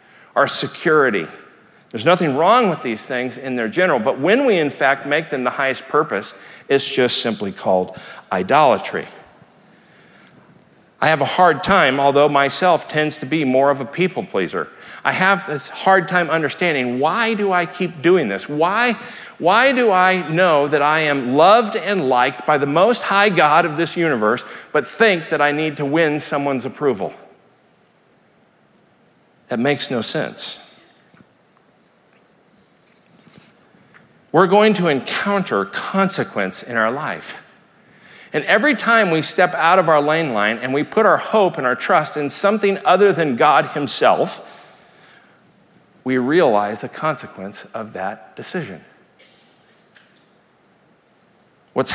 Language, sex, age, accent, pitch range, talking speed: English, male, 50-69, American, 135-185 Hz, 145 wpm